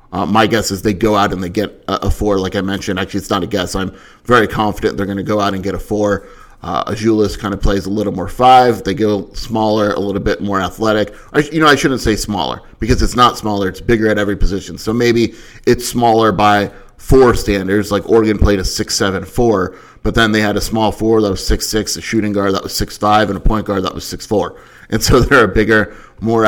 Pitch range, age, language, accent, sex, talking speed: 100-115 Hz, 30-49, English, American, male, 245 wpm